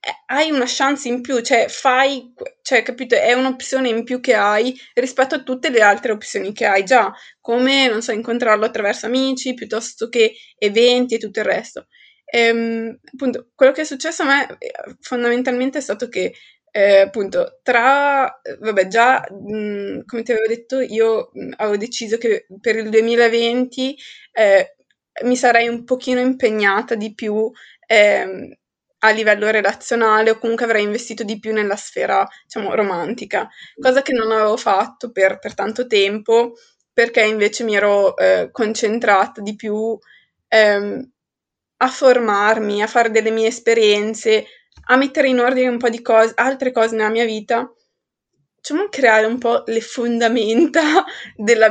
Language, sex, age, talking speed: Italian, female, 20-39, 150 wpm